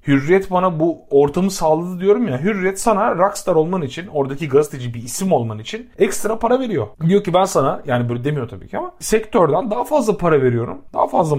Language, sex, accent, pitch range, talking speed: Turkish, male, native, 120-175 Hz, 200 wpm